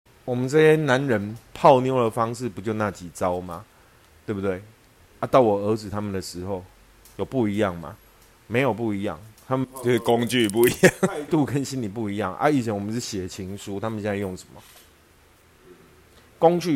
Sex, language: male, Chinese